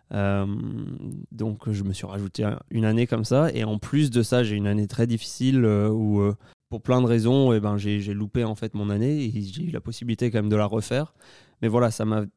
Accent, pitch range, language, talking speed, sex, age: French, 105-120 Hz, French, 245 wpm, male, 20-39